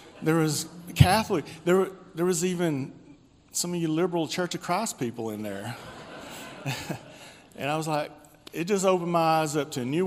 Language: English